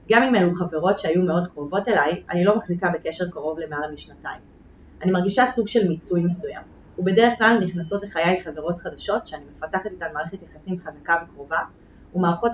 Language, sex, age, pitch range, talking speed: Hebrew, female, 30-49, 170-215 Hz, 165 wpm